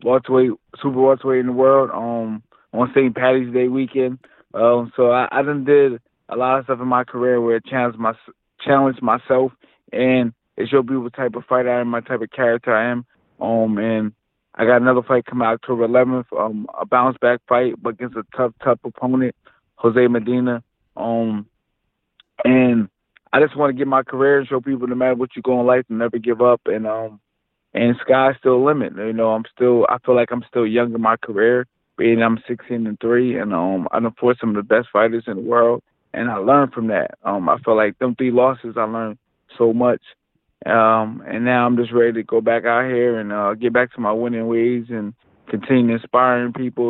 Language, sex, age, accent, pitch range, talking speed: English, male, 20-39, American, 115-125 Hz, 220 wpm